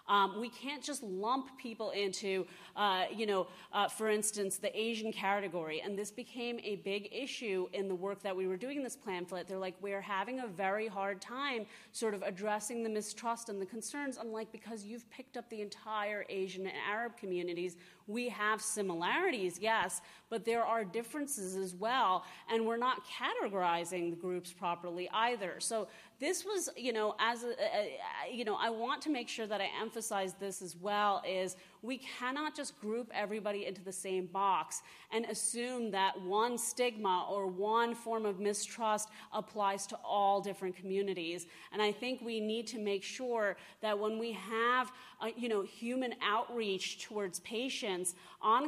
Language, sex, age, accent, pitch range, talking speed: English, female, 30-49, American, 195-230 Hz, 180 wpm